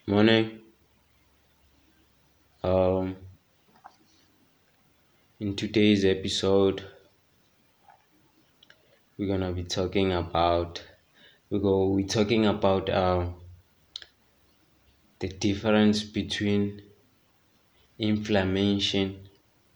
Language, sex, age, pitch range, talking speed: English, male, 20-39, 95-105 Hz, 60 wpm